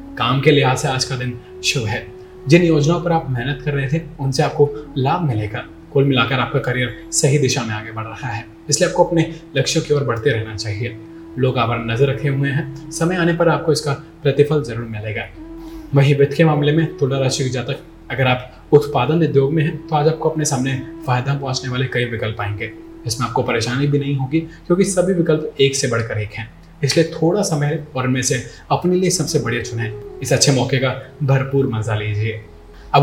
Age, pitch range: 20-39, 120-150 Hz